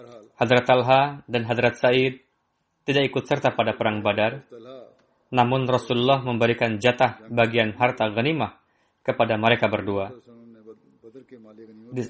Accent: native